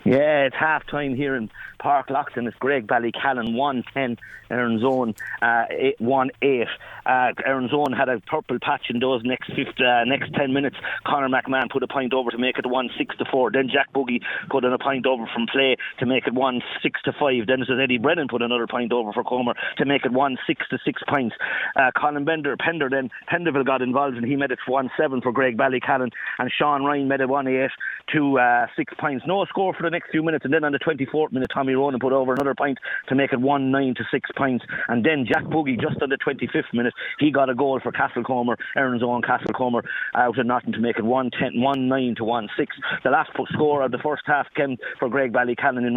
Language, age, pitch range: English, 30-49, 125-140 Hz